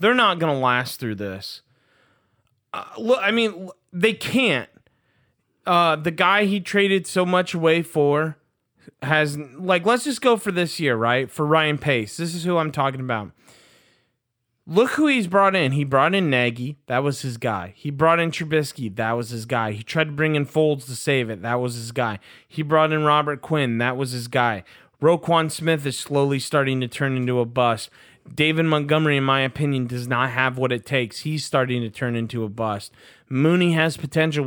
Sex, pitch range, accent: male, 125-160 Hz, American